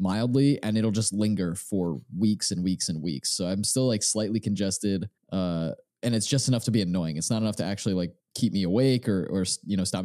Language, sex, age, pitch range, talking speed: English, male, 20-39, 100-125 Hz, 235 wpm